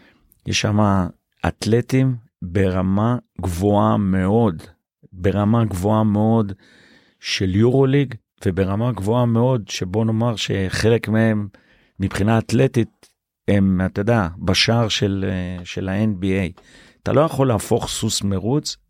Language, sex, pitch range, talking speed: Hebrew, male, 95-115 Hz, 105 wpm